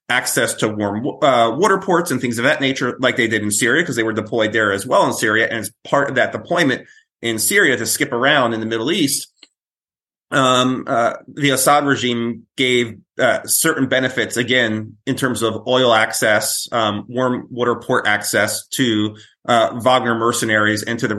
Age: 30-49